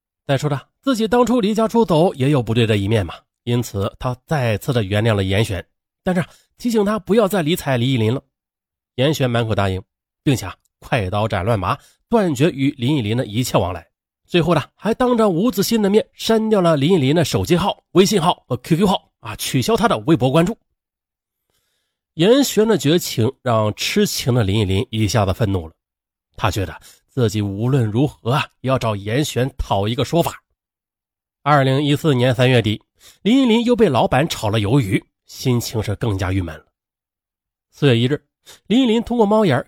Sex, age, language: male, 30-49, Chinese